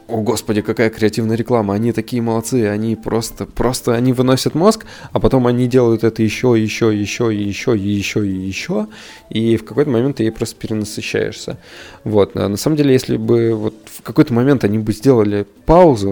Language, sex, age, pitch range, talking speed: Russian, male, 20-39, 100-120 Hz, 180 wpm